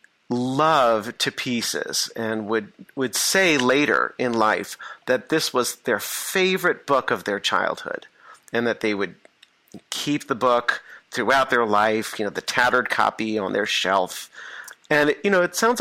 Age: 40-59